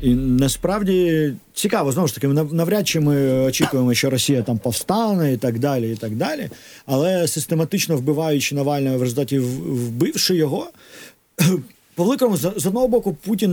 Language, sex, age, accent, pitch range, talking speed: Ukrainian, male, 40-59, native, 125-160 Hz, 150 wpm